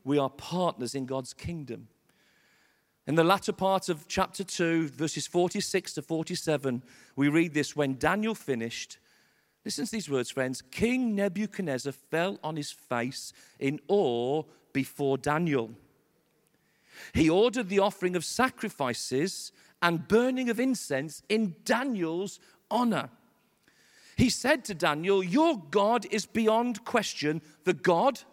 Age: 40-59